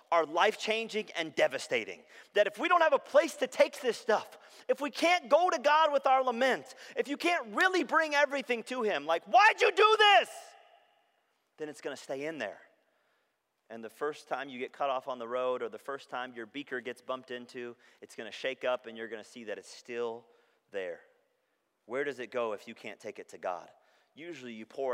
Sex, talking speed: male, 220 wpm